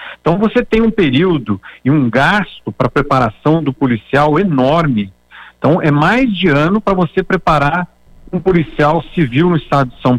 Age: 50-69